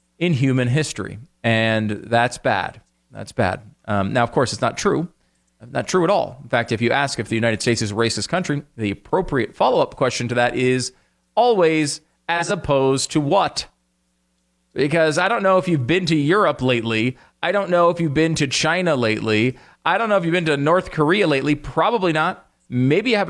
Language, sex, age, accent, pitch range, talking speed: English, male, 40-59, American, 115-165 Hz, 200 wpm